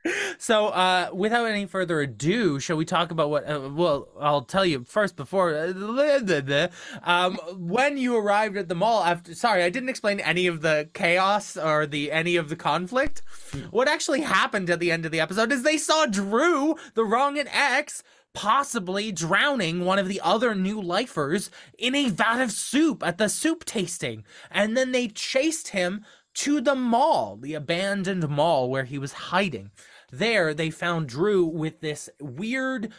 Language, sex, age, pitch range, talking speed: English, male, 20-39, 170-240 Hz, 175 wpm